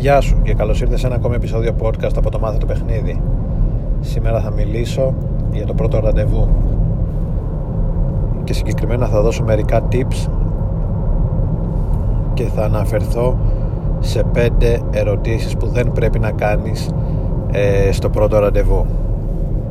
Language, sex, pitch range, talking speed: Greek, male, 105-125 Hz, 125 wpm